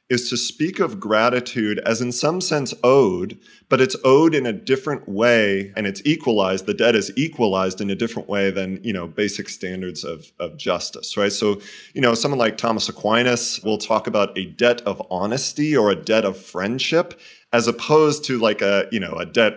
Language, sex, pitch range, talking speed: English, male, 105-135 Hz, 200 wpm